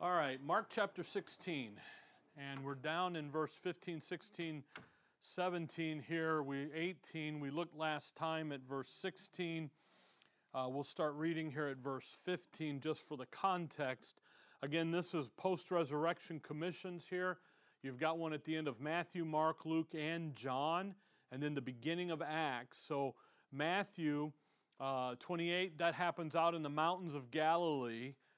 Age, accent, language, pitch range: 40-59, American, English, 145-175 Hz